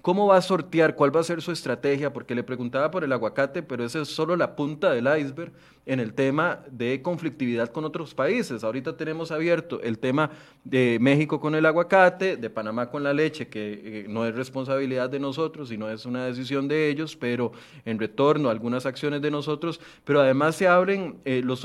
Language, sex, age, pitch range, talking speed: Spanish, male, 30-49, 120-160 Hz, 200 wpm